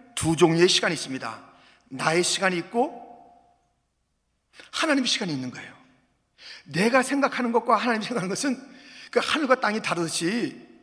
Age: 40-59